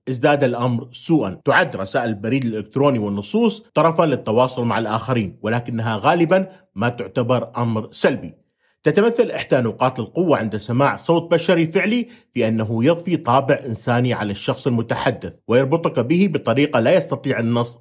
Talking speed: 140 wpm